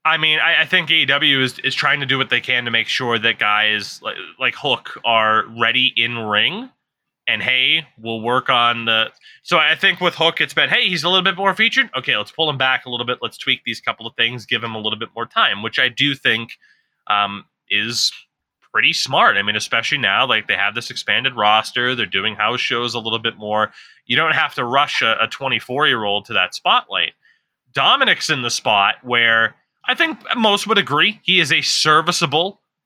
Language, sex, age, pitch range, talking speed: English, male, 20-39, 120-165 Hz, 215 wpm